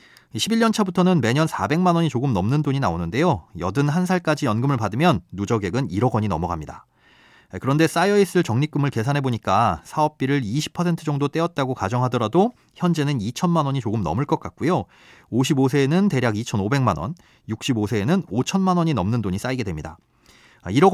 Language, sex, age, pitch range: Korean, male, 30-49, 115-160 Hz